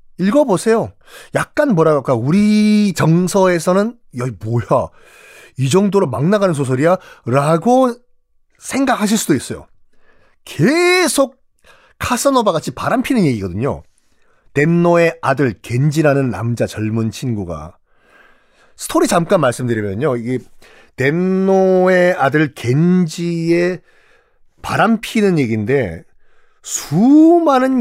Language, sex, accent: Korean, male, native